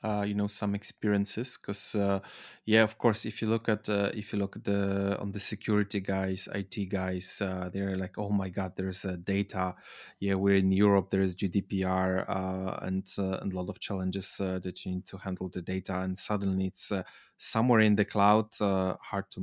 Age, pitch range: 20-39, 95-100 Hz